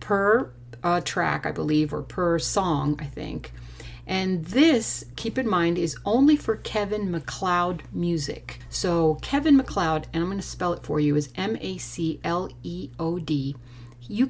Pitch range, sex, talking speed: 140-185 Hz, female, 145 wpm